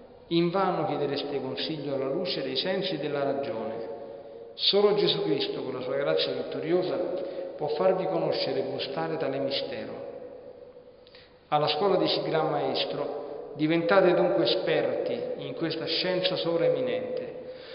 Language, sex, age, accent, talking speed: Italian, male, 40-59, native, 130 wpm